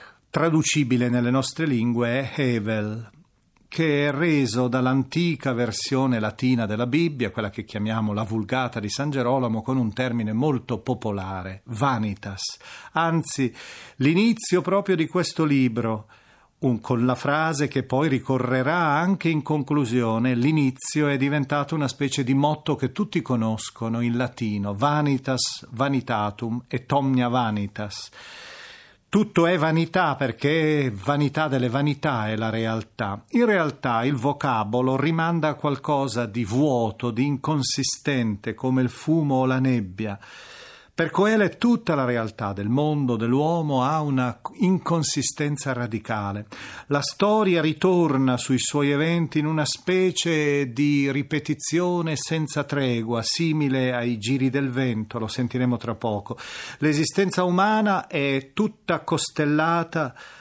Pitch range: 120-155 Hz